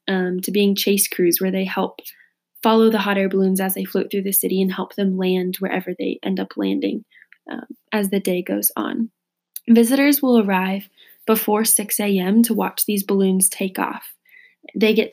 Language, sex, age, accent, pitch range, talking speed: English, female, 10-29, American, 195-225 Hz, 190 wpm